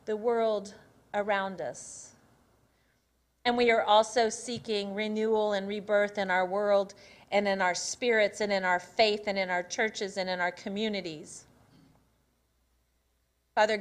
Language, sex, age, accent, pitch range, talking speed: English, female, 40-59, American, 185-225 Hz, 140 wpm